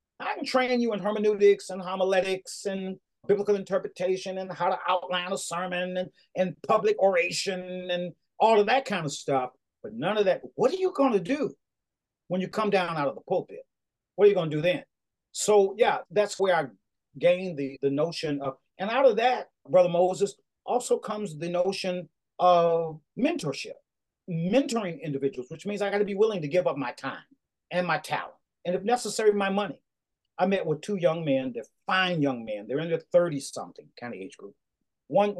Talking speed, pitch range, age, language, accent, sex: 195 wpm, 140-200 Hz, 40-59, English, American, male